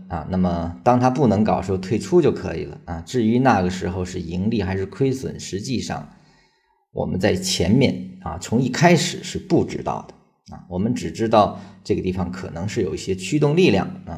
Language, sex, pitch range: Chinese, male, 95-125 Hz